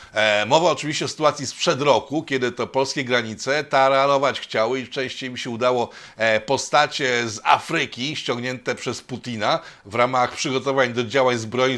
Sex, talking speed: male, 150 wpm